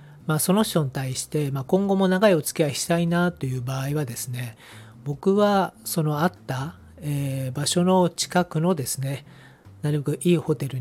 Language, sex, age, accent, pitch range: Japanese, male, 40-59, native, 125-170 Hz